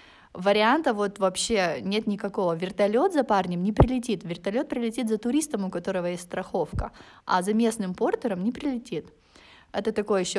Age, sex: 20-39, female